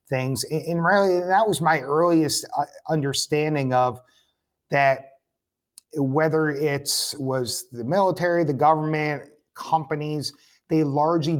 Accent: American